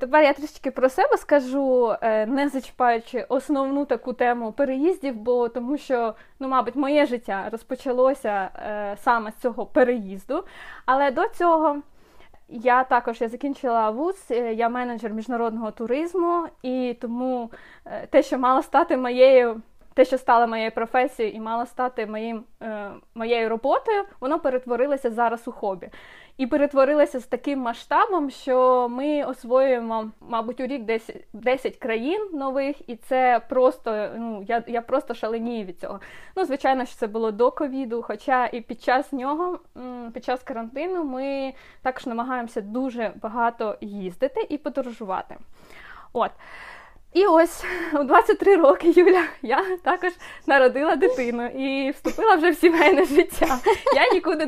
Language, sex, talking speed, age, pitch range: Ukrainian, female, 145 wpm, 20-39, 235-295 Hz